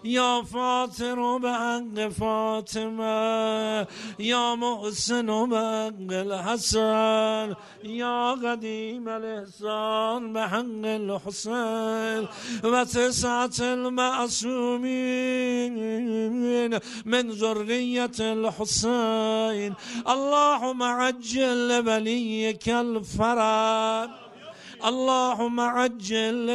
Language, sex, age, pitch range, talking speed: Persian, male, 50-69, 220-240 Hz, 55 wpm